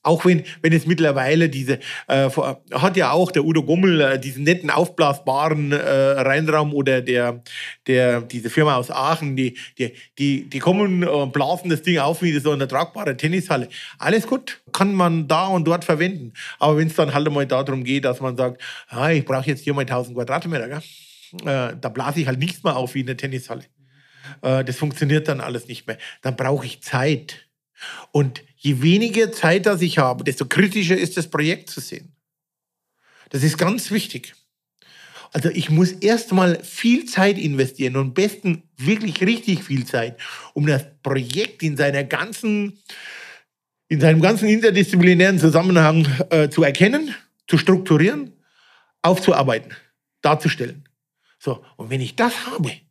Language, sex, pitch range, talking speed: German, male, 135-180 Hz, 170 wpm